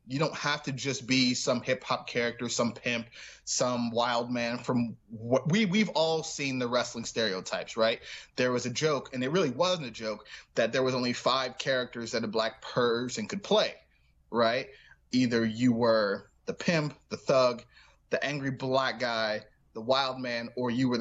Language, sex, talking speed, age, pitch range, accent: English, male, 185 wpm, 20-39, 110-130 Hz, American